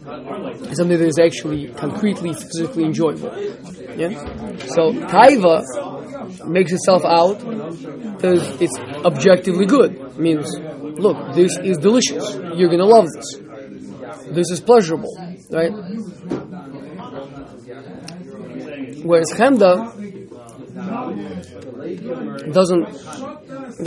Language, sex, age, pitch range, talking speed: English, male, 20-39, 160-200 Hz, 85 wpm